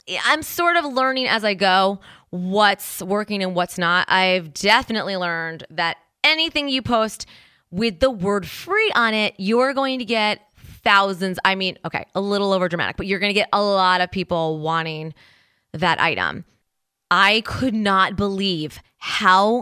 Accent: American